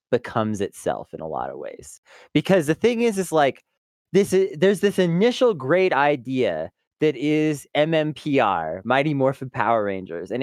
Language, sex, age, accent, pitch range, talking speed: English, male, 20-39, American, 120-180 Hz, 160 wpm